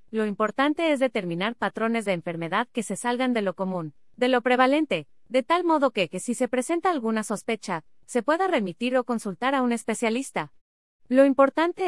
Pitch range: 200-260 Hz